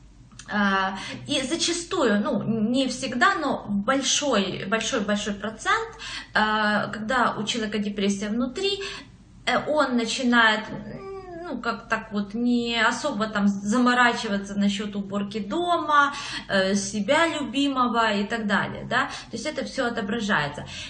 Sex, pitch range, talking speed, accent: female, 205-275 Hz, 110 wpm, native